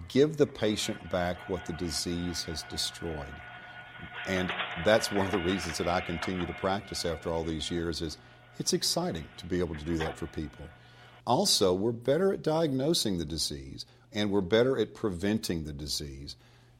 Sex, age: male, 50-69